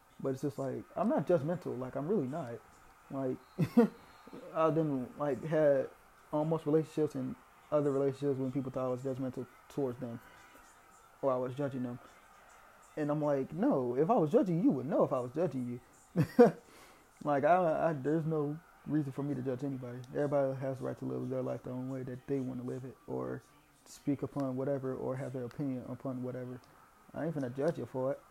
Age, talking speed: 20-39, 205 wpm